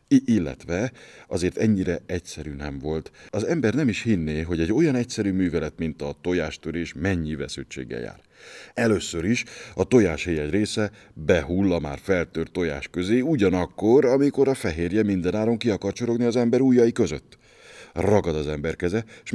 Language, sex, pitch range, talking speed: Hungarian, male, 80-105 Hz, 150 wpm